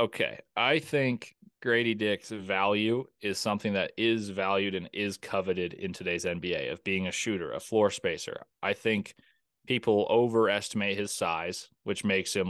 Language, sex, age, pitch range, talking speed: English, male, 30-49, 95-115 Hz, 160 wpm